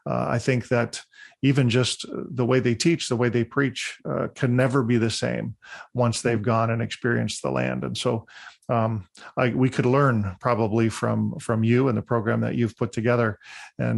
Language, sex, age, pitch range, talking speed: English, male, 40-59, 115-135 Hz, 200 wpm